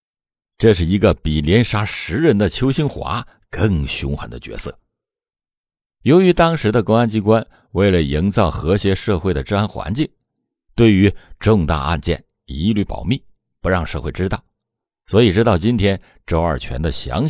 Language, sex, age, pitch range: Chinese, male, 50-69, 85-115 Hz